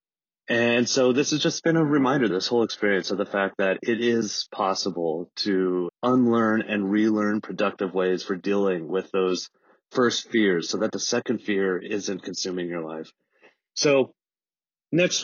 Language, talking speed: English, 160 wpm